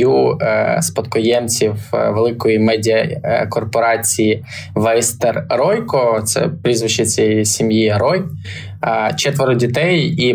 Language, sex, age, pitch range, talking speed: Ukrainian, male, 20-39, 105-120 Hz, 75 wpm